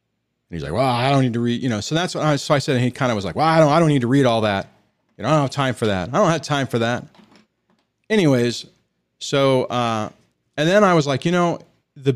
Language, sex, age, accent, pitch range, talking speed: English, male, 40-59, American, 105-145 Hz, 290 wpm